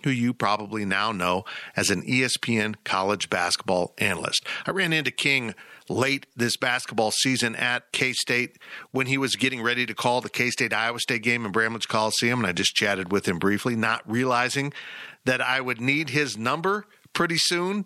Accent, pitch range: American, 110-150 Hz